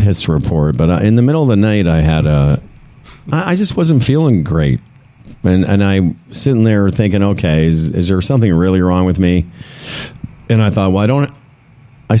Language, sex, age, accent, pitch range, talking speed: English, male, 50-69, American, 100-150 Hz, 190 wpm